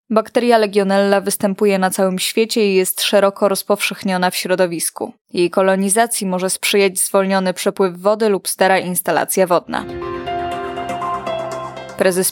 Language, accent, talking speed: Polish, native, 115 wpm